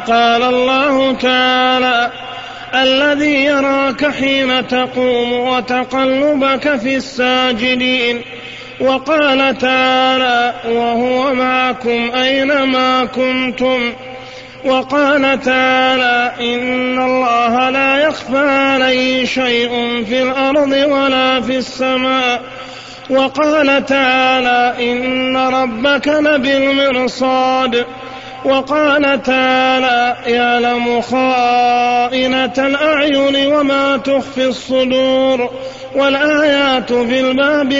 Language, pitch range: Arabic, 255-275 Hz